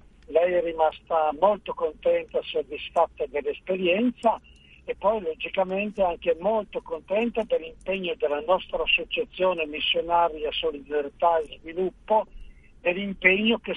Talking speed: 105 wpm